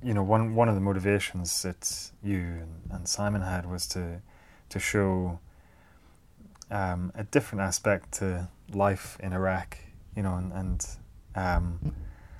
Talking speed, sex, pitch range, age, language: 140 wpm, male, 90-100 Hz, 20-39, English